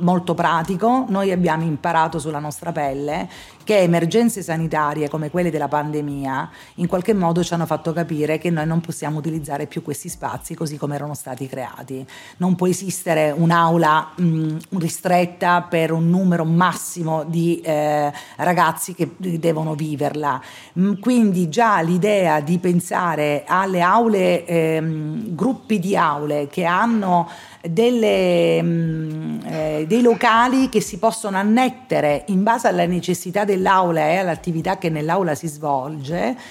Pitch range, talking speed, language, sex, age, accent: 155-190 Hz, 135 wpm, Italian, female, 40-59, native